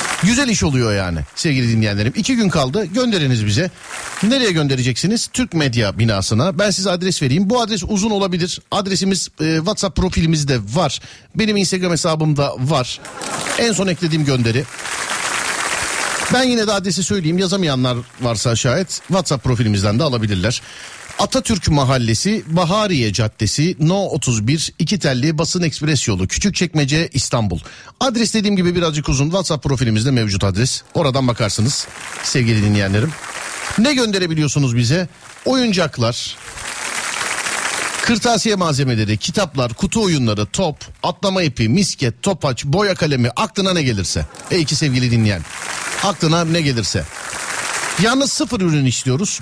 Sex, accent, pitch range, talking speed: male, native, 115-190 Hz, 130 wpm